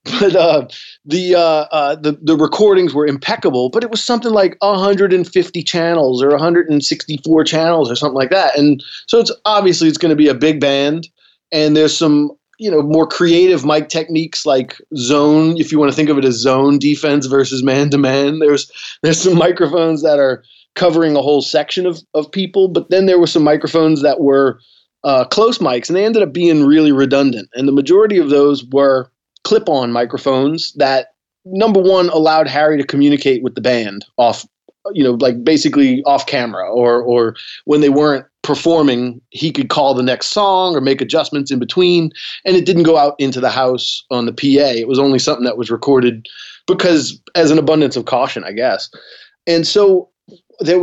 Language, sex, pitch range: English, male, 140-175 Hz